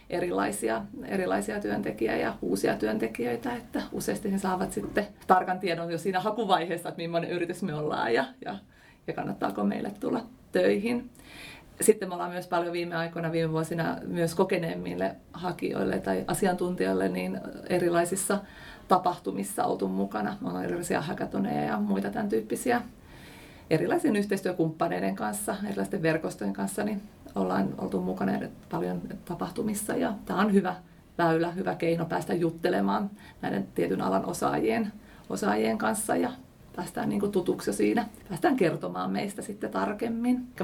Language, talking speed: Finnish, 135 wpm